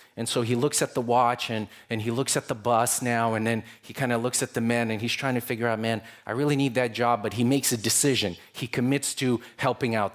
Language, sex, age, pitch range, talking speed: English, male, 30-49, 110-130 Hz, 270 wpm